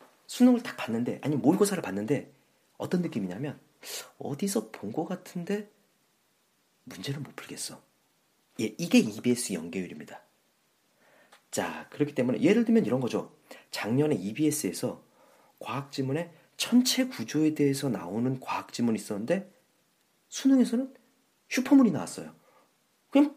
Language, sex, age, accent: Korean, male, 40-59, native